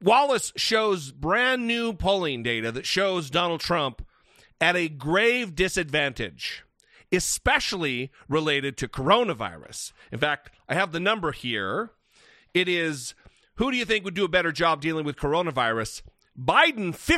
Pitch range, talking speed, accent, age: 140-205 Hz, 135 wpm, American, 40-59